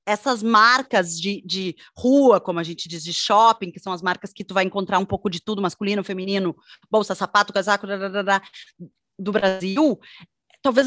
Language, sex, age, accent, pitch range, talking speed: Portuguese, female, 20-39, Brazilian, 190-270 Hz, 170 wpm